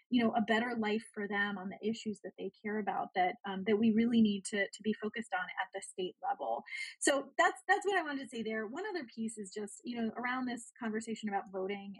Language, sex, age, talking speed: English, female, 30-49, 250 wpm